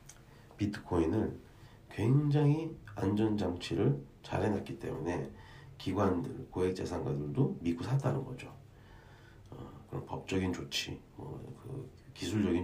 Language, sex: Korean, male